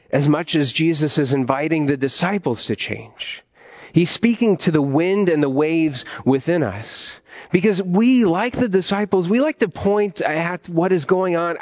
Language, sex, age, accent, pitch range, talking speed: English, male, 30-49, American, 150-205 Hz, 175 wpm